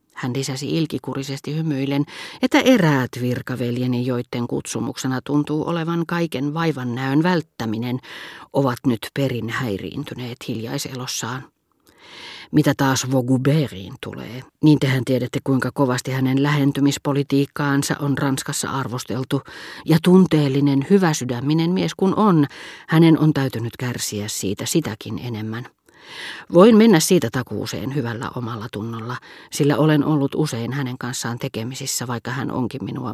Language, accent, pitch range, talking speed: Finnish, native, 125-150 Hz, 120 wpm